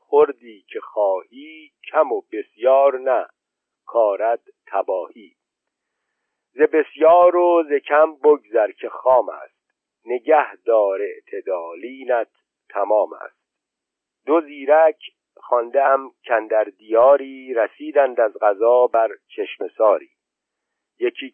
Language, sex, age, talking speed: Persian, male, 50-69, 100 wpm